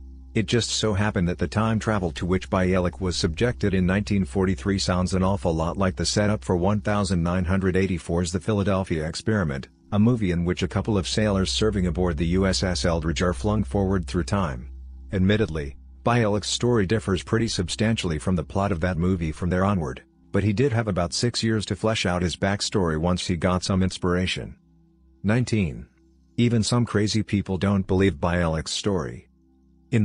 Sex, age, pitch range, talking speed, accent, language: male, 50-69, 85-105 Hz, 175 wpm, American, English